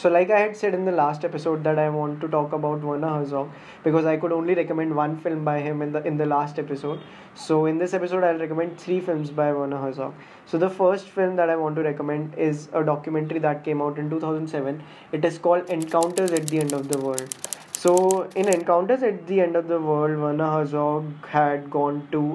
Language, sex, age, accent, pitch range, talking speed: English, male, 20-39, Indian, 145-165 Hz, 225 wpm